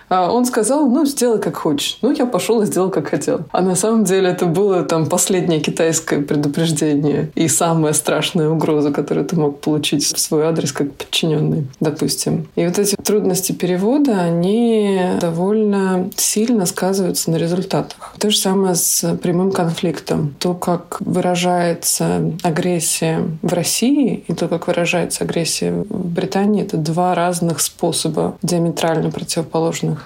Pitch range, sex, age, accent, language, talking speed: 160-195 Hz, female, 20-39, native, Russian, 150 wpm